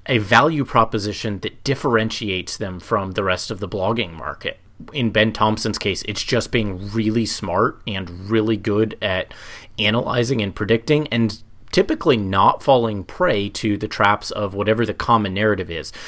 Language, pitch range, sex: English, 100-115 Hz, male